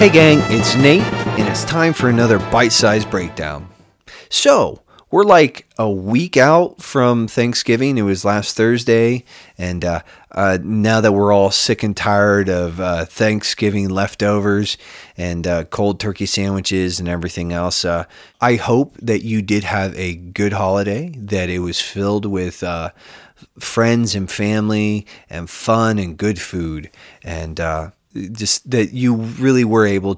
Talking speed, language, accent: 155 wpm, English, American